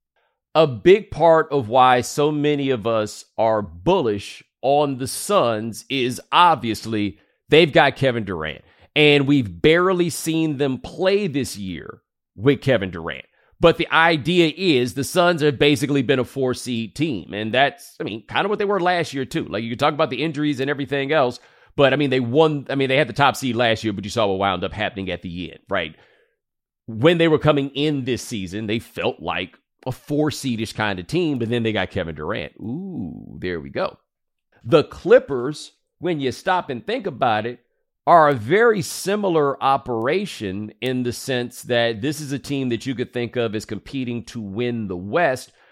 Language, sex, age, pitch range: English, male, 30-49, 105-145 Hz